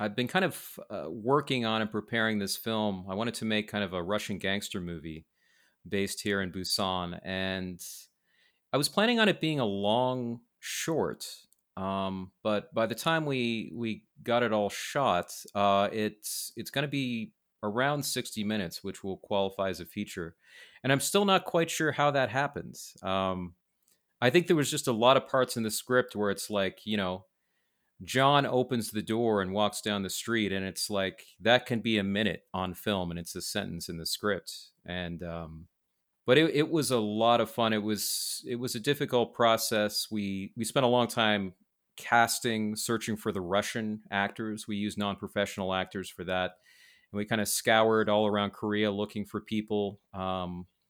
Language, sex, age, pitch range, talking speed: English, male, 30-49, 100-120 Hz, 190 wpm